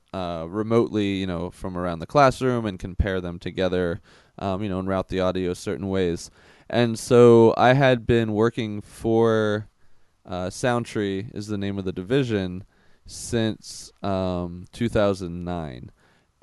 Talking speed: 140 wpm